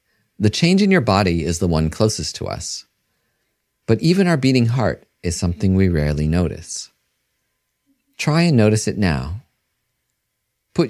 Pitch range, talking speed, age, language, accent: 85-110 Hz, 150 wpm, 40-59, English, American